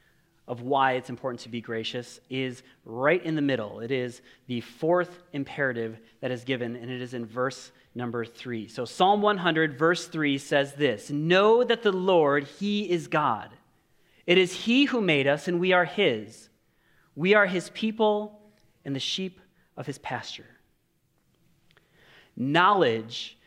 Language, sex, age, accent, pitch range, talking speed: English, male, 30-49, American, 135-195 Hz, 160 wpm